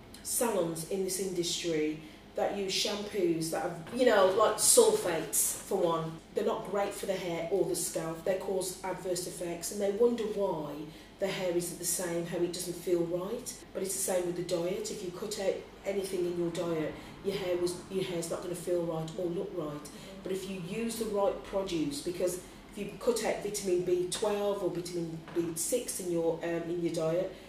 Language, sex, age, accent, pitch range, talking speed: English, female, 40-59, British, 175-200 Hz, 205 wpm